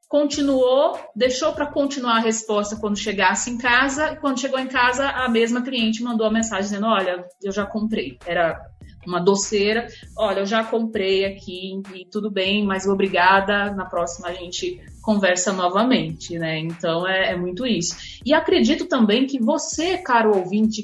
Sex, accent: female, Brazilian